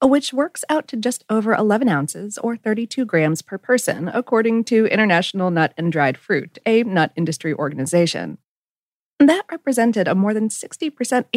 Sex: female